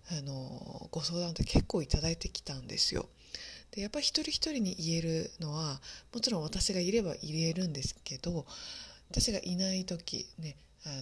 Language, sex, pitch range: Japanese, female, 155-210 Hz